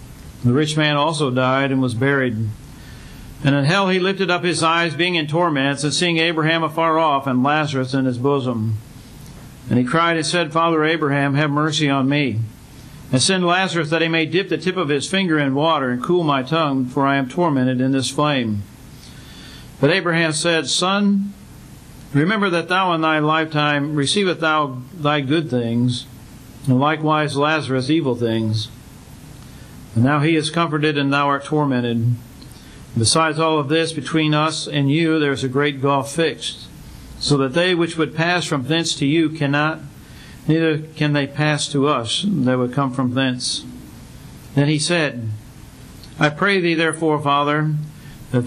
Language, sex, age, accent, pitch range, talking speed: English, male, 50-69, American, 130-160 Hz, 170 wpm